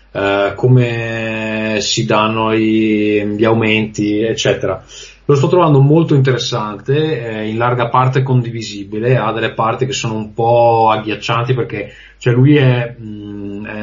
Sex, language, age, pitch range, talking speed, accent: male, Italian, 20-39, 105-125 Hz, 120 wpm, native